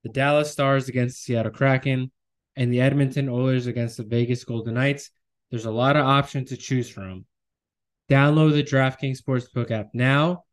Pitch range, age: 120-145 Hz, 20-39